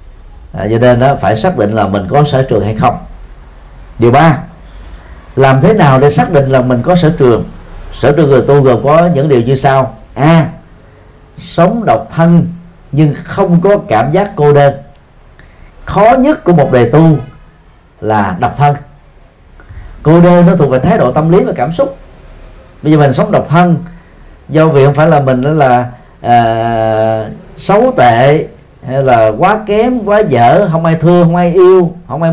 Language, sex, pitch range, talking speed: Vietnamese, male, 125-165 Hz, 185 wpm